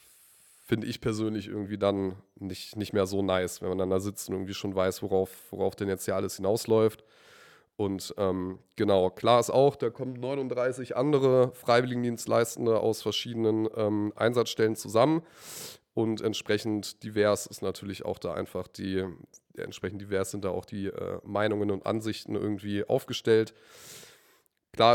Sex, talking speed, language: male, 155 wpm, German